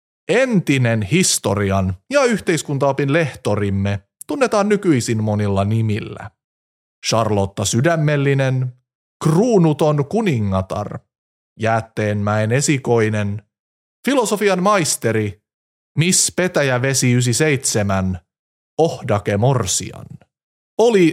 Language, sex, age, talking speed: Finnish, male, 30-49, 70 wpm